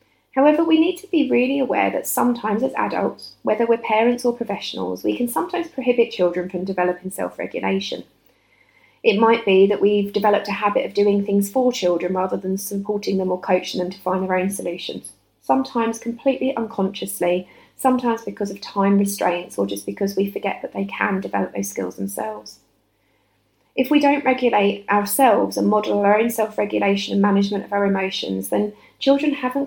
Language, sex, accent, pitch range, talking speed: English, female, British, 175-215 Hz, 175 wpm